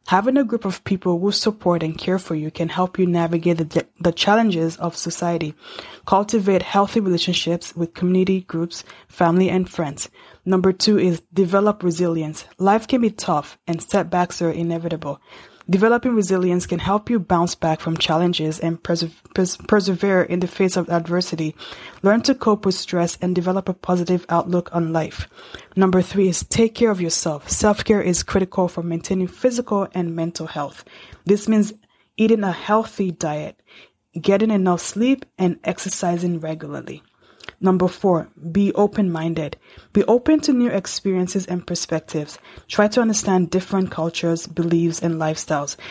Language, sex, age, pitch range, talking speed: English, female, 20-39, 170-200 Hz, 155 wpm